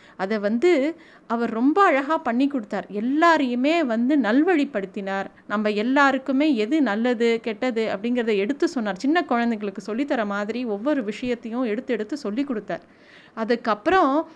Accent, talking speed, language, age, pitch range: native, 120 wpm, Tamil, 30-49, 225-300 Hz